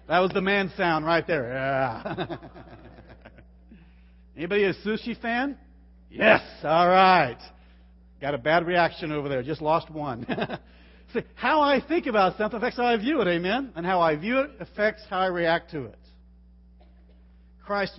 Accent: American